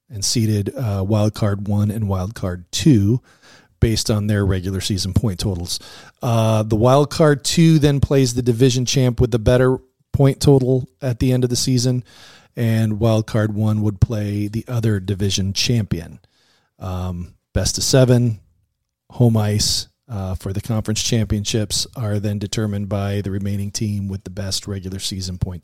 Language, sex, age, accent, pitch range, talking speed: English, male, 40-59, American, 100-130 Hz, 170 wpm